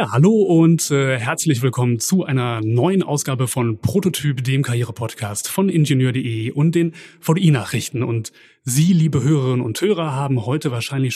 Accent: German